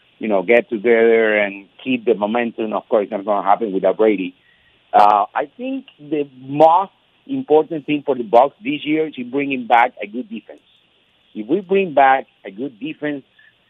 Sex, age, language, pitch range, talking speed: male, 50-69, English, 105-140 Hz, 185 wpm